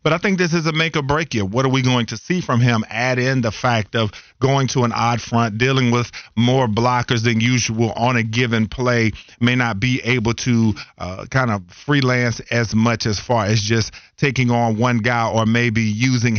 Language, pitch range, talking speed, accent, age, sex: English, 110-125 Hz, 220 wpm, American, 40-59, male